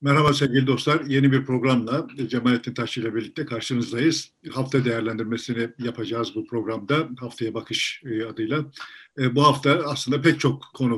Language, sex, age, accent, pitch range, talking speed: Turkish, male, 50-69, native, 120-140 Hz, 135 wpm